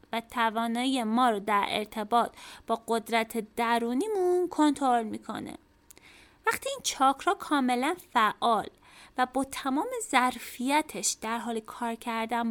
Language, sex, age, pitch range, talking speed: Persian, female, 20-39, 225-280 Hz, 115 wpm